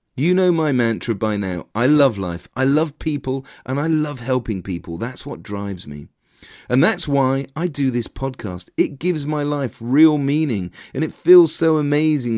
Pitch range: 115-155 Hz